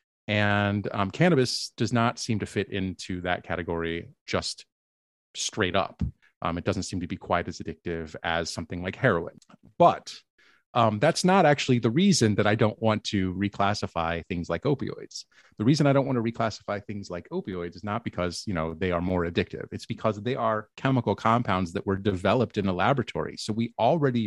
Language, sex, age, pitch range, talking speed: English, male, 30-49, 90-115 Hz, 190 wpm